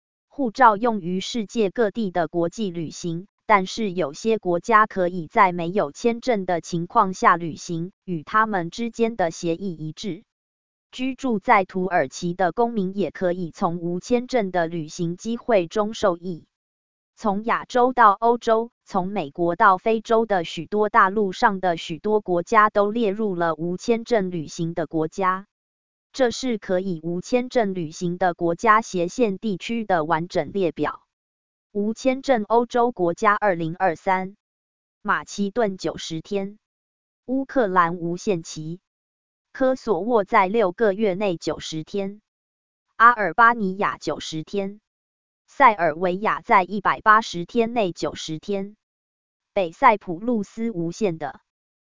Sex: female